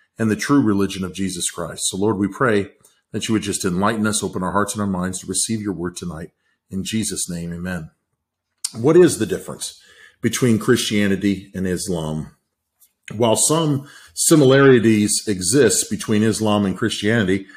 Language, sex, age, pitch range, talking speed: English, male, 40-59, 100-125 Hz, 165 wpm